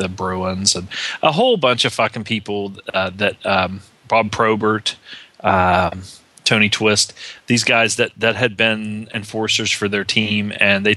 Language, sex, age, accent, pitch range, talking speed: English, male, 30-49, American, 100-115 Hz, 160 wpm